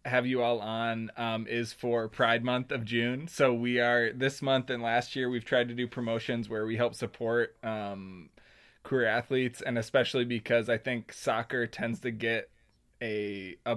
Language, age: English, 20-39